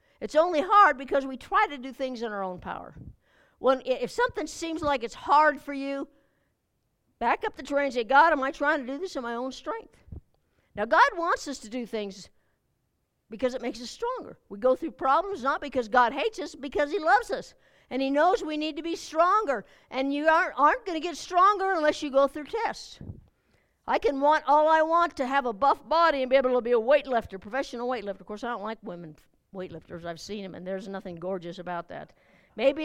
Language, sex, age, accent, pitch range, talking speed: English, female, 60-79, American, 240-315 Hz, 225 wpm